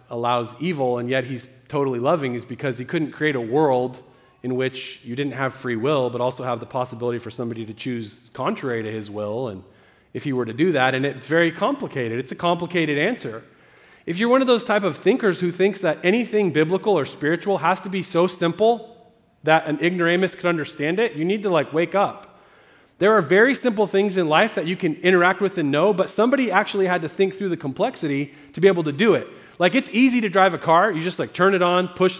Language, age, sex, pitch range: English, 30-49, male, 145-195 Hz